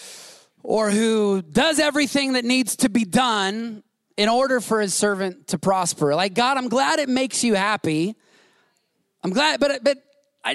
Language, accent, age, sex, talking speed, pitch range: English, American, 30-49, male, 165 wpm, 195-250 Hz